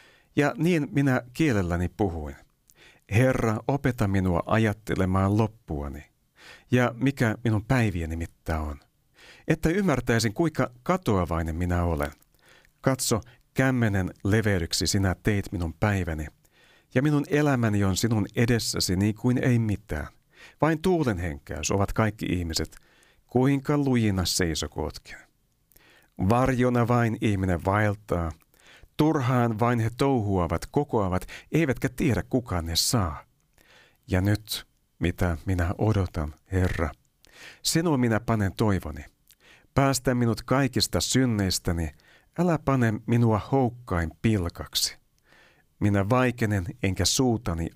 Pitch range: 90-125 Hz